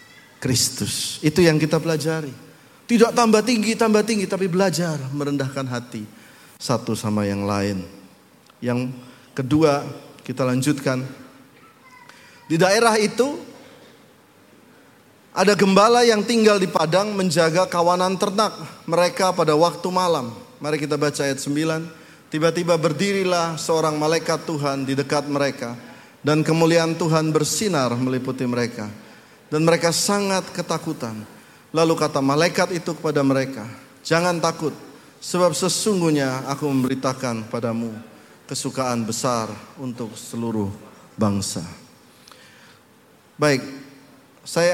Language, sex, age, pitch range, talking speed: Indonesian, male, 30-49, 130-175 Hz, 110 wpm